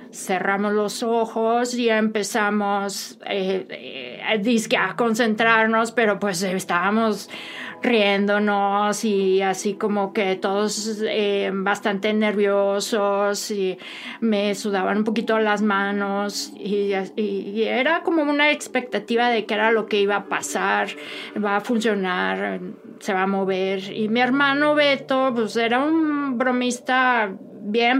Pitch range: 200-230 Hz